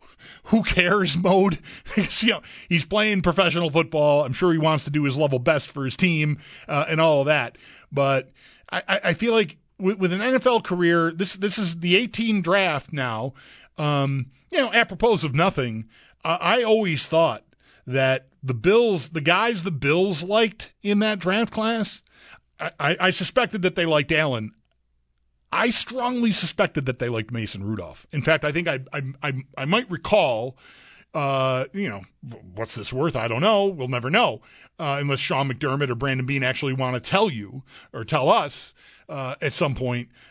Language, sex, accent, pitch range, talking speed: English, male, American, 135-185 Hz, 180 wpm